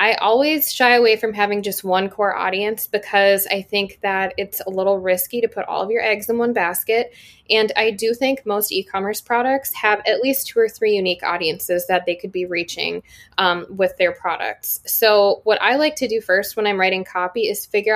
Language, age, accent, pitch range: English, 20-39, American, 180-220 Hz